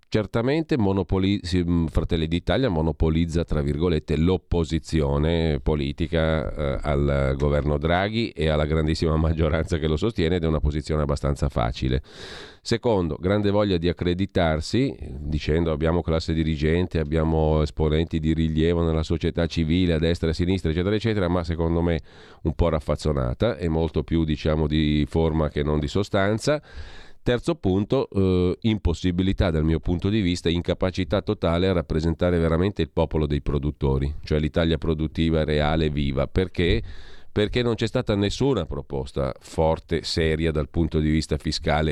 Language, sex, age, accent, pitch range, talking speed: Italian, male, 40-59, native, 75-95 Hz, 145 wpm